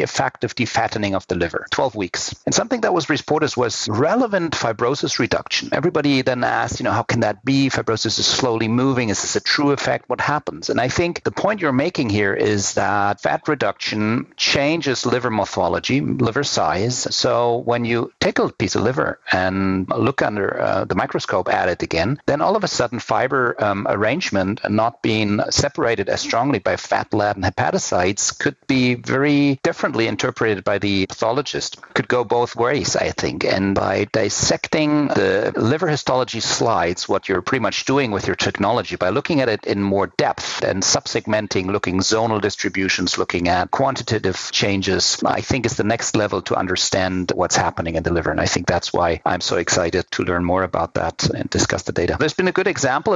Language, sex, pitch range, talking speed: English, male, 100-125 Hz, 190 wpm